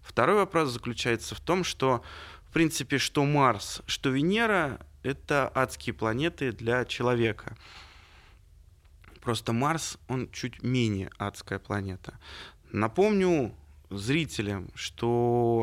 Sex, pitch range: male, 95-130 Hz